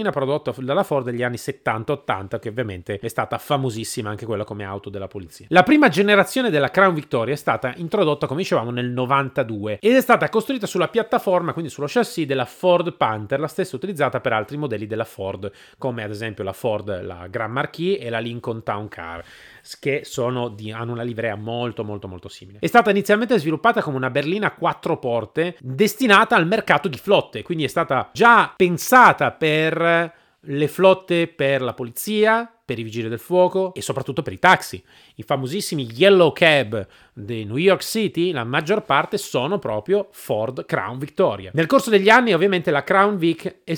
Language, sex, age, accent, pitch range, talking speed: Italian, male, 30-49, native, 120-185 Hz, 180 wpm